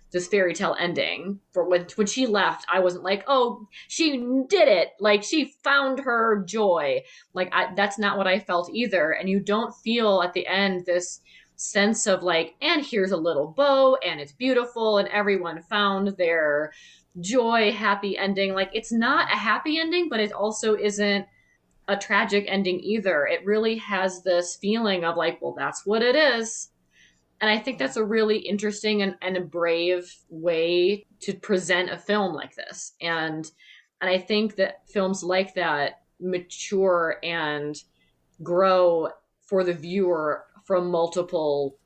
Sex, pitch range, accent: female, 175-210 Hz, American